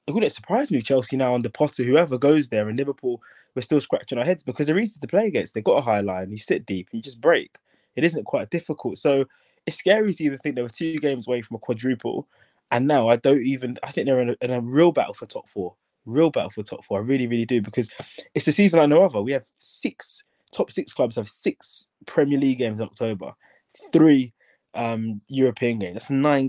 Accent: British